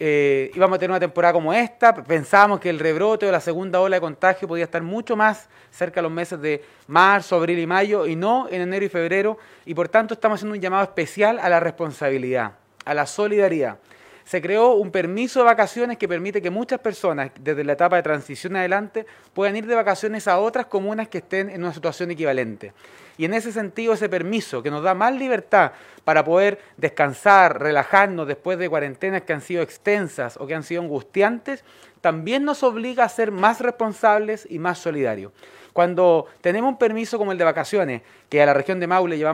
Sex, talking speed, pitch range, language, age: male, 205 wpm, 165-220 Hz, Spanish, 30-49